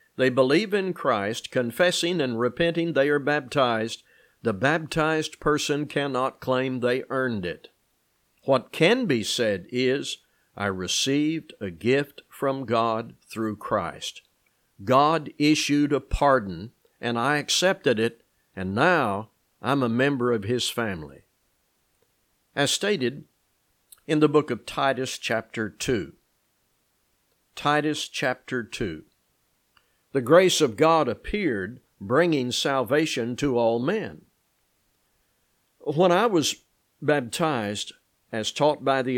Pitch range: 120-150 Hz